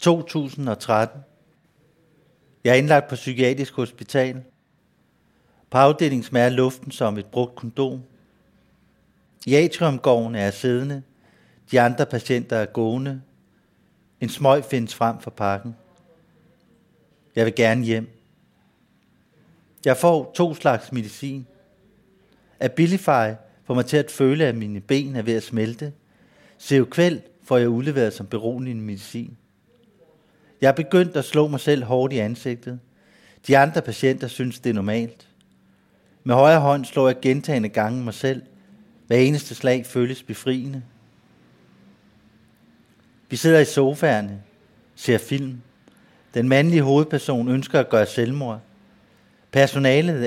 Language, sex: Danish, male